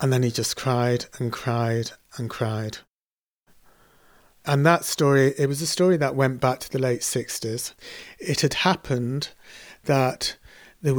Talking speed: 155 wpm